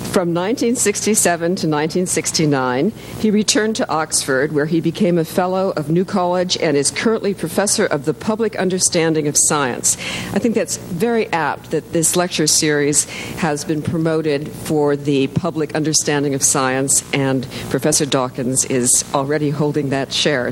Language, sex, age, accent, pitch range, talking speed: English, female, 50-69, American, 145-185 Hz, 150 wpm